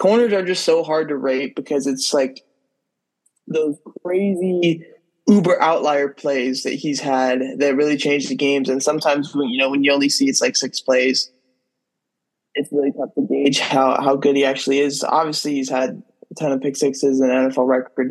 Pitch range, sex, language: 140-185 Hz, male, English